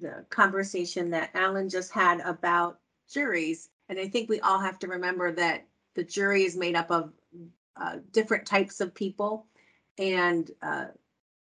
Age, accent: 40-59, American